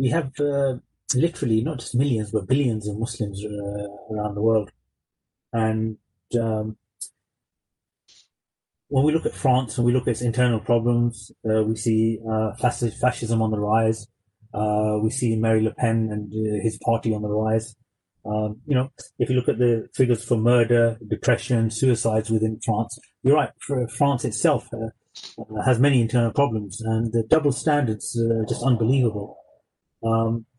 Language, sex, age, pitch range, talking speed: English, male, 30-49, 110-125 Hz, 165 wpm